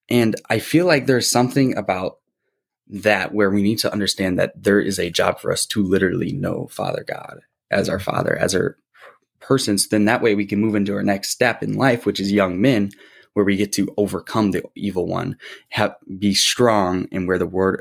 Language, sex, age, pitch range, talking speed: English, male, 20-39, 95-105 Hz, 210 wpm